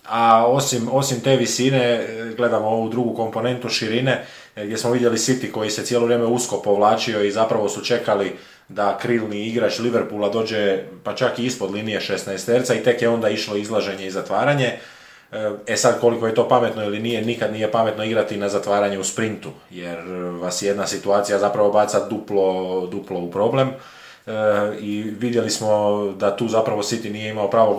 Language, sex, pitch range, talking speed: Croatian, male, 95-115 Hz, 175 wpm